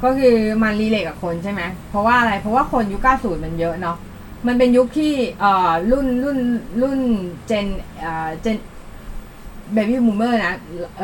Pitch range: 185-245 Hz